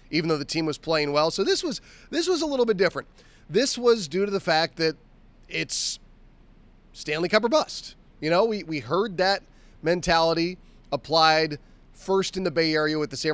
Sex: male